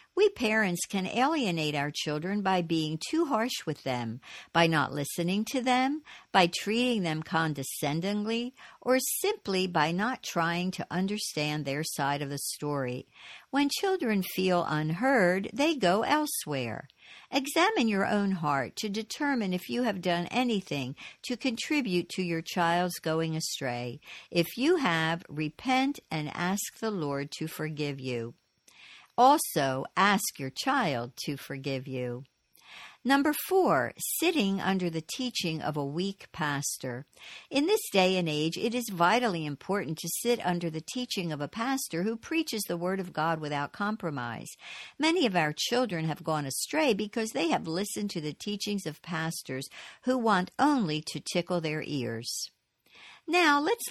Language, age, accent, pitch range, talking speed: English, 60-79, American, 155-235 Hz, 150 wpm